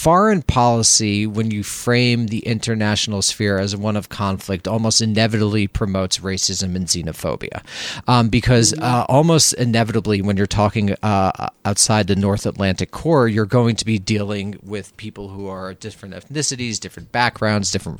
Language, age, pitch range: English, 40-59, 95-115 Hz